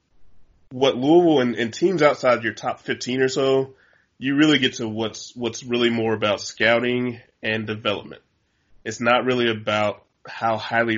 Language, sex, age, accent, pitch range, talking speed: English, male, 20-39, American, 105-120 Hz, 160 wpm